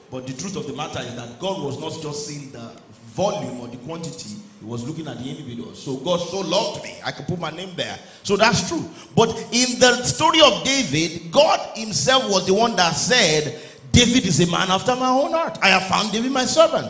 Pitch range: 150-230 Hz